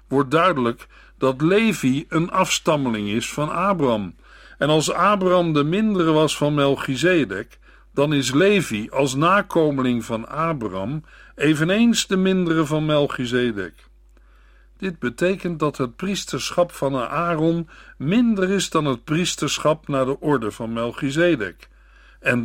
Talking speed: 125 wpm